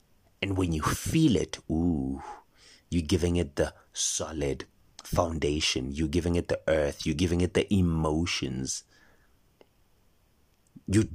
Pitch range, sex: 80-100 Hz, male